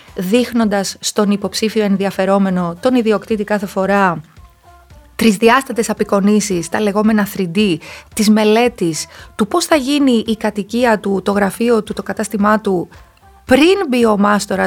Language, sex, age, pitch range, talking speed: Greek, female, 20-39, 190-245 Hz, 125 wpm